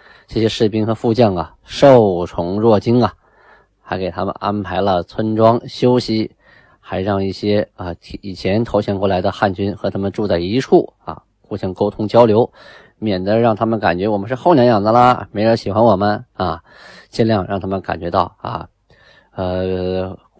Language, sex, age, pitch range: Chinese, male, 20-39, 95-120 Hz